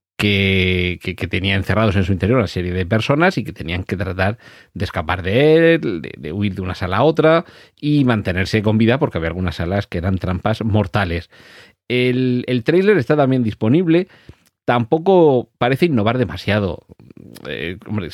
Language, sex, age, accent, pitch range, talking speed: Spanish, male, 40-59, Spanish, 100-125 Hz, 170 wpm